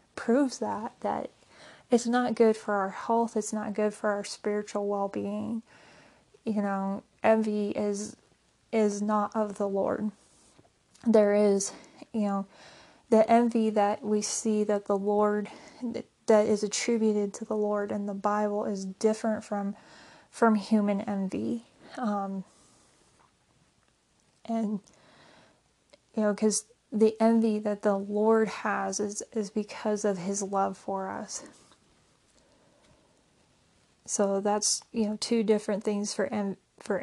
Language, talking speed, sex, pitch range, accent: English, 130 wpm, female, 200-220 Hz, American